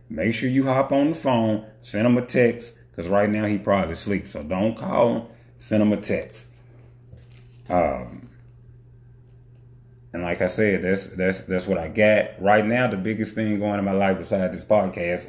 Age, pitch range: 30-49, 95-120 Hz